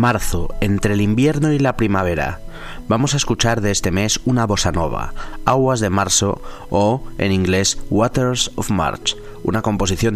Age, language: 30-49, Spanish